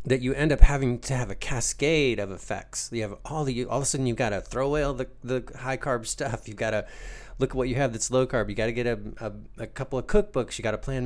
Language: English